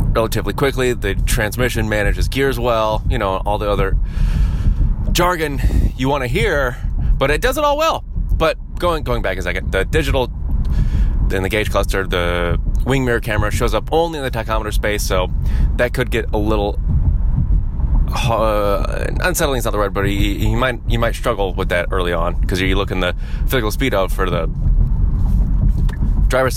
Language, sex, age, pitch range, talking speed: English, male, 20-39, 85-115 Hz, 180 wpm